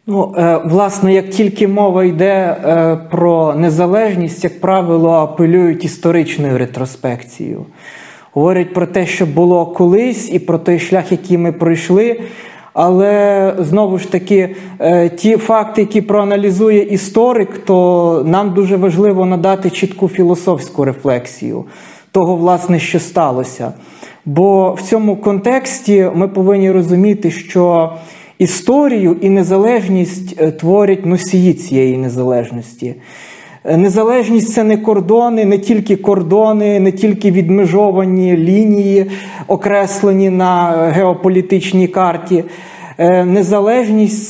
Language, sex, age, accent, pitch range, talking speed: Ukrainian, male, 20-39, native, 170-200 Hz, 110 wpm